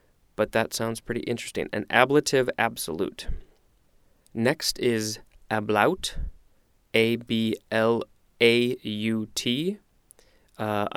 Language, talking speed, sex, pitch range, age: English, 75 wpm, male, 105-130 Hz, 20-39